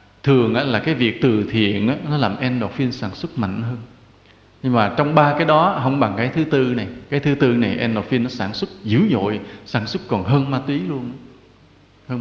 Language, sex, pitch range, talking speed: English, male, 105-155 Hz, 220 wpm